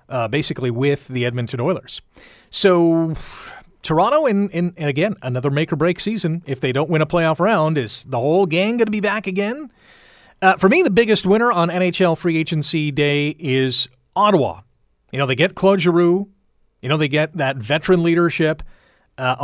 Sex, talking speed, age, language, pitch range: male, 180 wpm, 30-49, English, 140-180 Hz